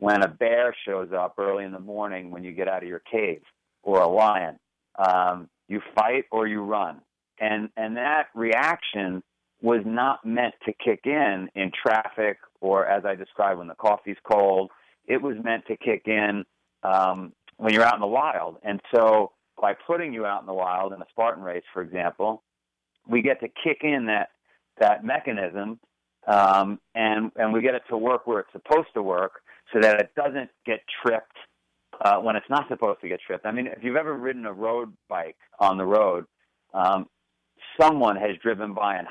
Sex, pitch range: male, 95-115 Hz